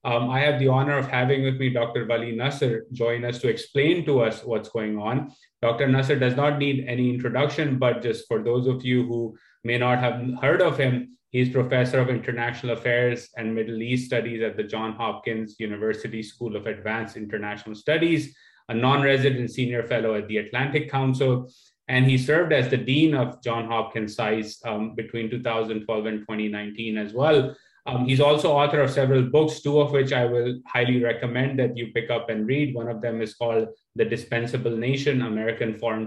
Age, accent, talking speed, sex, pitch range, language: 30-49, Indian, 190 wpm, male, 115-135 Hz, English